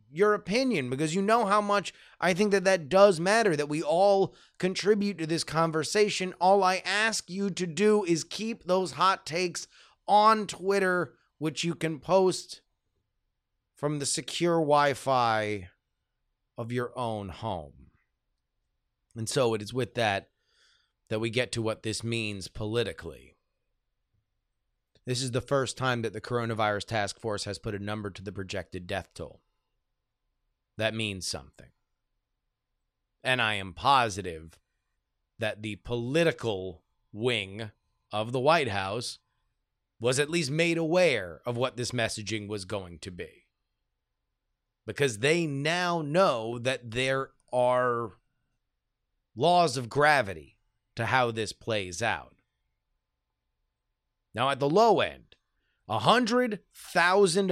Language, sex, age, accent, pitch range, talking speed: English, male, 30-49, American, 110-170 Hz, 130 wpm